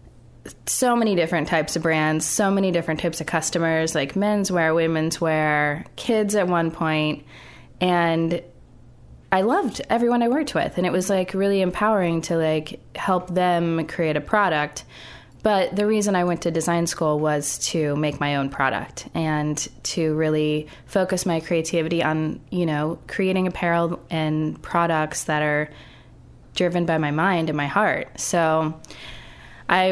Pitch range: 155-185 Hz